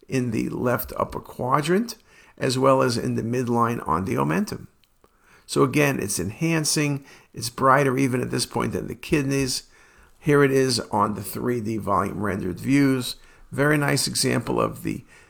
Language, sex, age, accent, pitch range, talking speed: English, male, 50-69, American, 125-155 Hz, 160 wpm